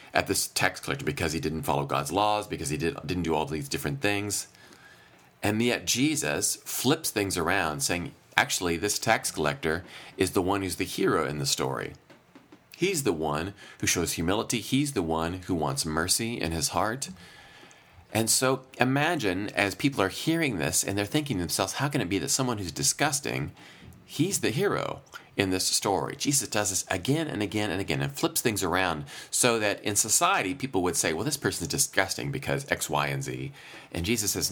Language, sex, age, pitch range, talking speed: English, male, 40-59, 90-120 Hz, 195 wpm